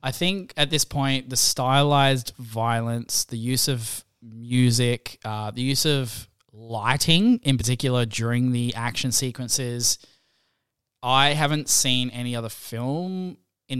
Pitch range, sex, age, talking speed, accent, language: 110-130 Hz, male, 10-29, 130 wpm, Australian, English